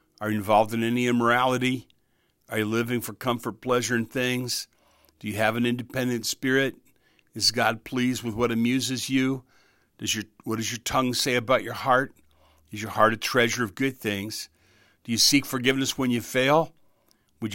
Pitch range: 115-135 Hz